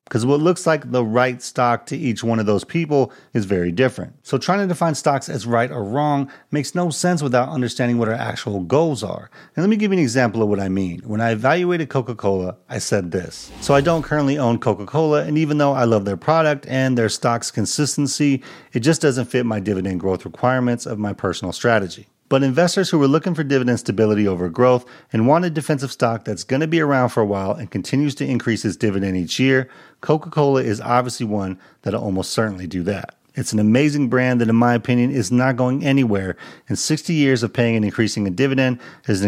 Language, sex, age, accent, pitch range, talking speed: English, male, 40-59, American, 105-145 Hz, 225 wpm